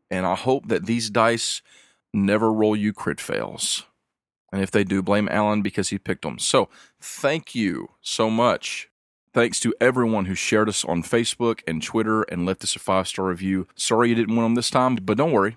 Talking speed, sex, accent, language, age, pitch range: 200 wpm, male, American, English, 40-59, 100-120 Hz